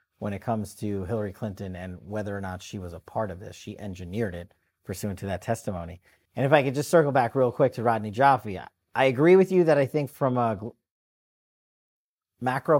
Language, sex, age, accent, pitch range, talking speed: English, male, 40-59, American, 105-130 Hz, 215 wpm